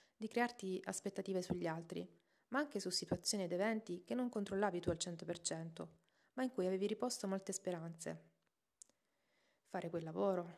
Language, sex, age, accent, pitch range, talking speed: Italian, female, 30-49, native, 175-215 Hz, 155 wpm